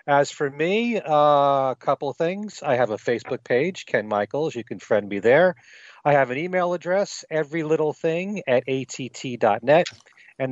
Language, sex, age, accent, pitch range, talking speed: English, male, 40-59, American, 120-150 Hz, 155 wpm